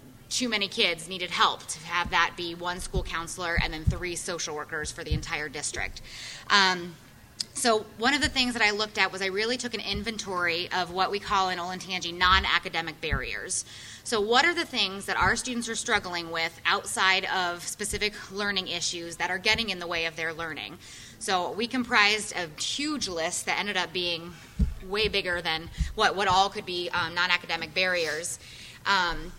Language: English